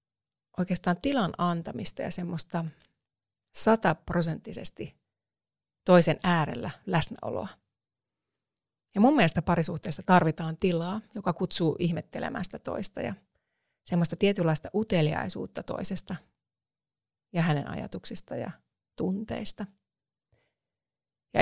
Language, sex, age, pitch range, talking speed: Finnish, female, 30-49, 150-195 Hz, 85 wpm